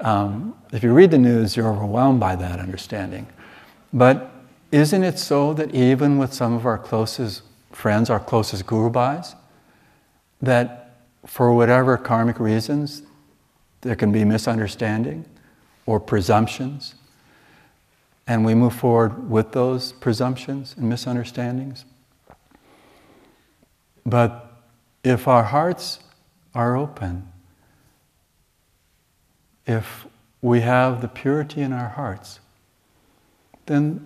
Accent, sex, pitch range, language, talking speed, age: American, male, 105-135 Hz, English, 105 wpm, 60-79